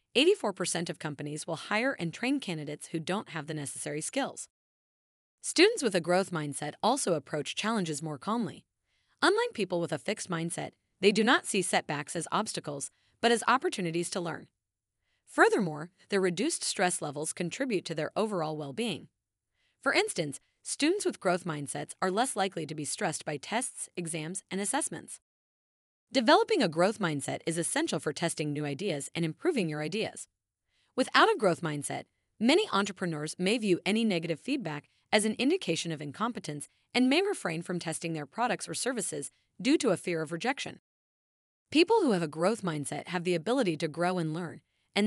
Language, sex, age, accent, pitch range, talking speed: English, female, 30-49, American, 155-230 Hz, 170 wpm